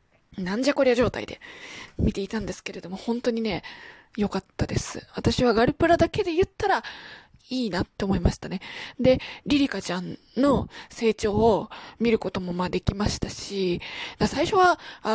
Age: 20-39